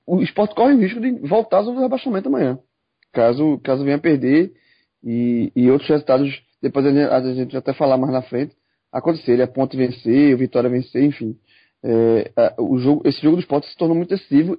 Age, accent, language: 20-39, Brazilian, Portuguese